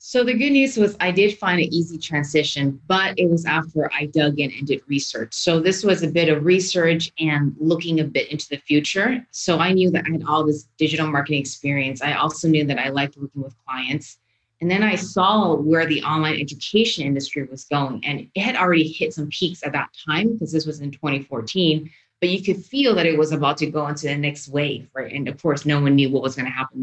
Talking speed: 240 wpm